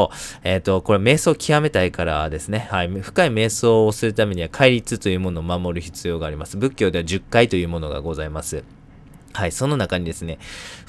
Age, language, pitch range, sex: 20-39, Japanese, 90-115 Hz, male